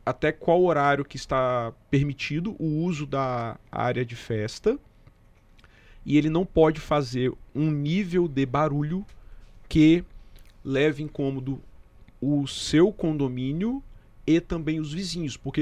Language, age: Portuguese, 40-59